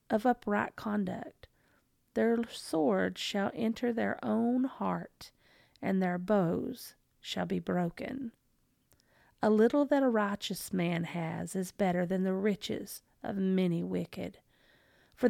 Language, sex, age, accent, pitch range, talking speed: English, female, 40-59, American, 185-240 Hz, 125 wpm